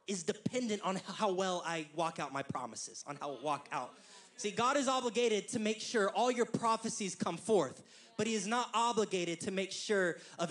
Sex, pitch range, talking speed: male, 190-245 Hz, 205 wpm